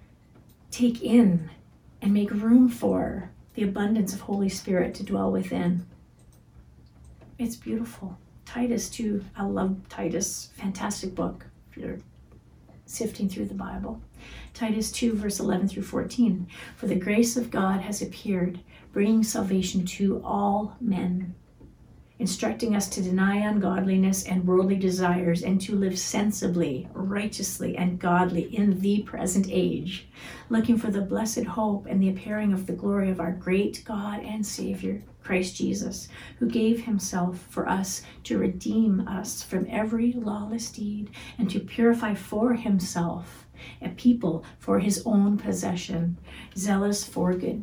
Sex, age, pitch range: female, 50-69, 185-215 Hz